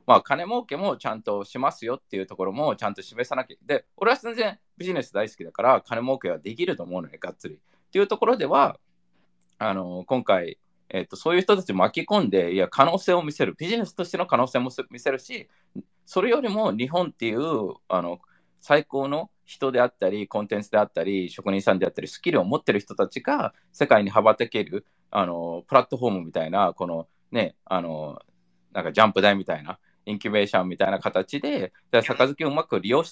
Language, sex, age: Japanese, male, 20-39